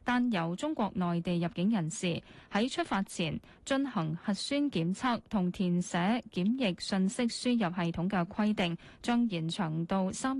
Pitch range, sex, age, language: 175-235 Hz, female, 20-39, Chinese